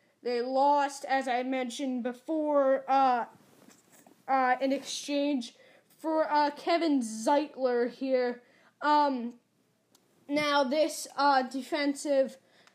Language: English